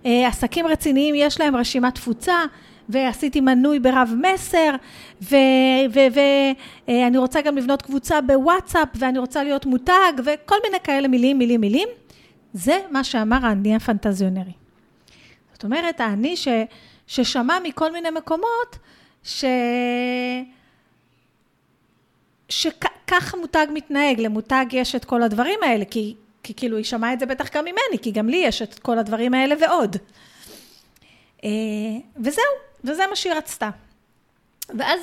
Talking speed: 130 wpm